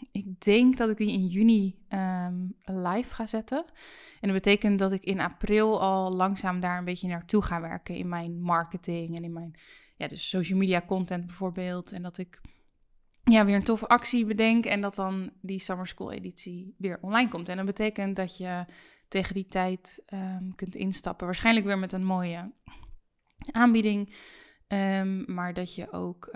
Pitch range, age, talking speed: 180-205 Hz, 10-29, 165 wpm